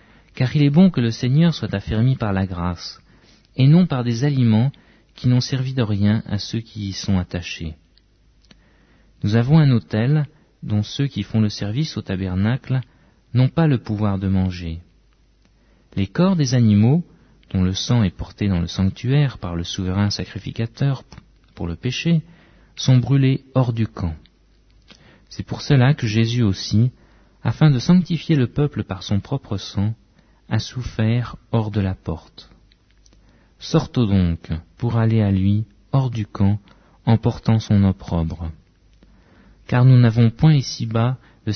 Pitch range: 95-125 Hz